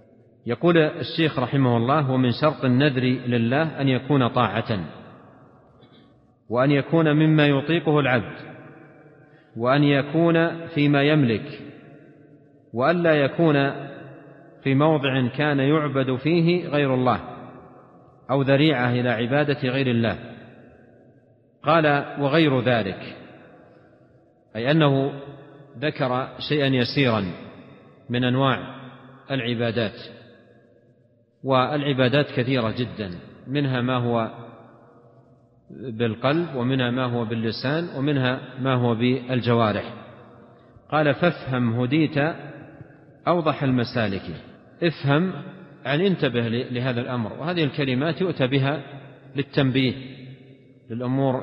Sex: male